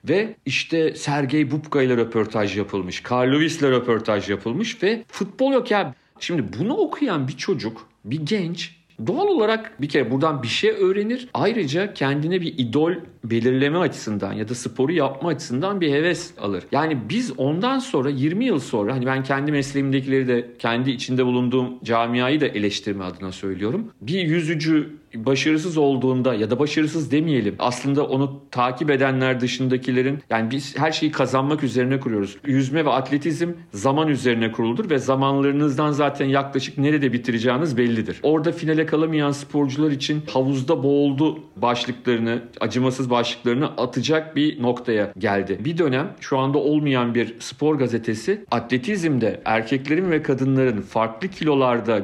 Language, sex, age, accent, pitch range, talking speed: Turkish, male, 40-59, native, 120-155 Hz, 145 wpm